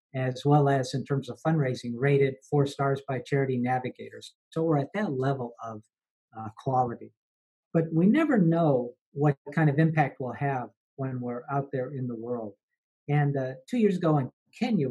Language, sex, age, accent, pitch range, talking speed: English, male, 50-69, American, 125-160 Hz, 180 wpm